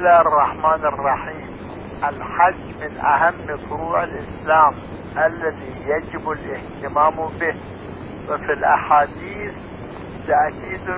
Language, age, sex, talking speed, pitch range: Arabic, 60-79, male, 75 wpm, 145-175 Hz